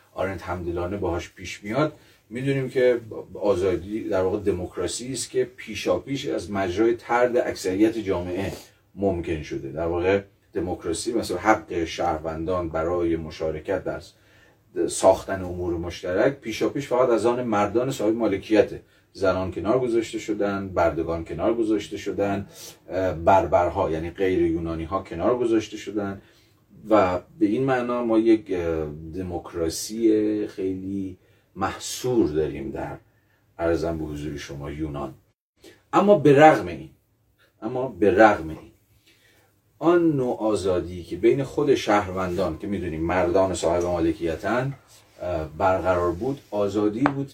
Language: Persian